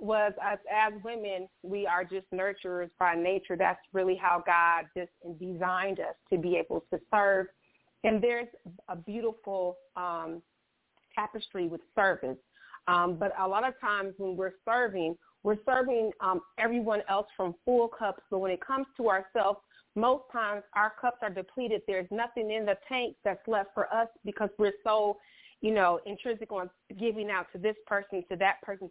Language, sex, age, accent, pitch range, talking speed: English, female, 30-49, American, 185-215 Hz, 170 wpm